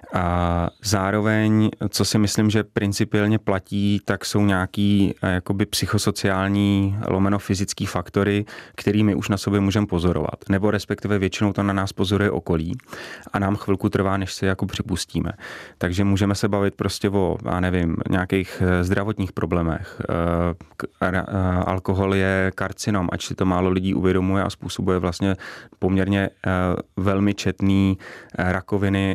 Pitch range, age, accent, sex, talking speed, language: 90-100 Hz, 30-49, native, male, 130 wpm, Czech